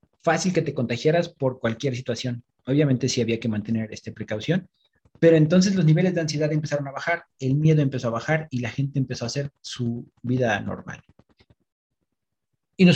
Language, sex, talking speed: Spanish, male, 180 wpm